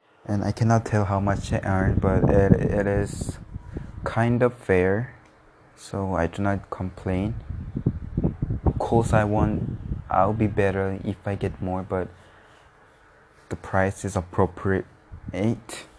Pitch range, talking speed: 95-110 Hz, 140 wpm